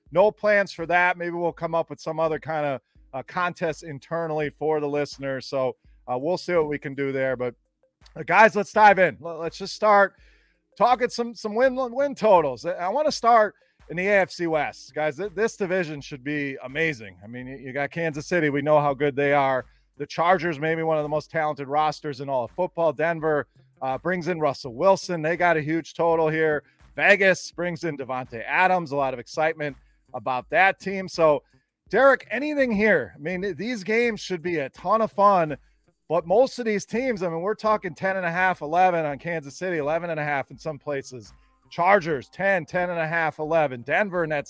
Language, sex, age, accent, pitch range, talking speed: English, male, 30-49, American, 145-195 Hz, 210 wpm